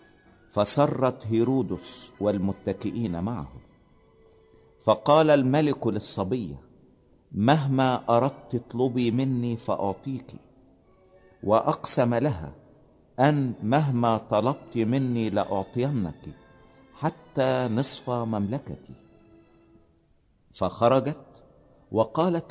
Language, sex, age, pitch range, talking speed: Italian, male, 50-69, 105-130 Hz, 65 wpm